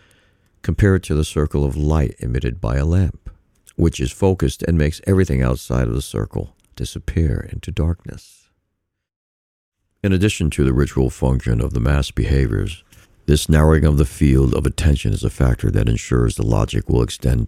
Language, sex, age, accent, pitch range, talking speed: English, male, 60-79, American, 70-95 Hz, 170 wpm